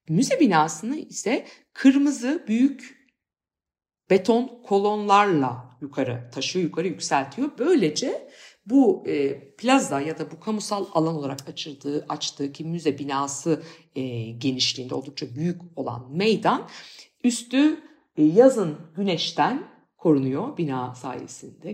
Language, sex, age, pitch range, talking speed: Turkish, female, 50-69, 145-225 Hz, 100 wpm